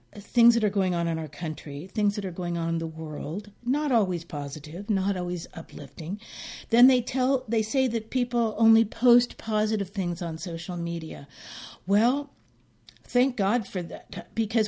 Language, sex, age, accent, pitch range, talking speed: English, female, 50-69, American, 190-245 Hz, 170 wpm